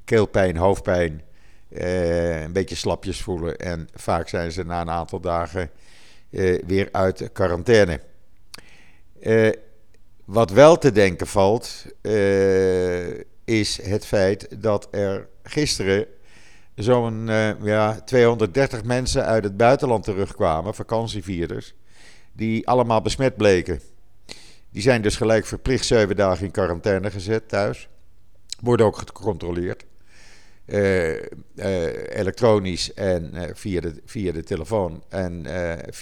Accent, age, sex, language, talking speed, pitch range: Dutch, 50-69, male, Dutch, 115 wpm, 90-115 Hz